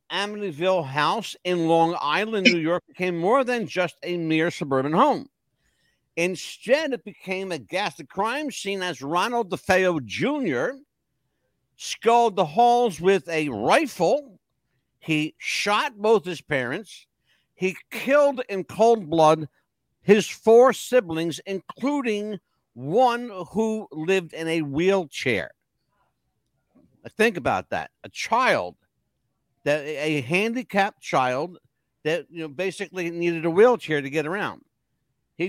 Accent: American